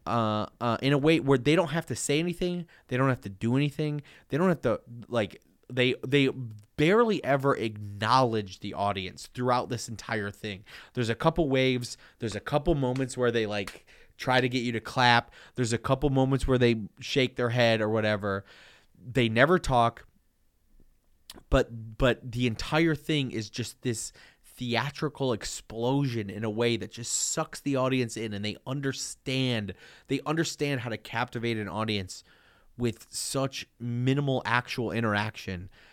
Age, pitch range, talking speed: 20-39, 110-135 Hz, 165 wpm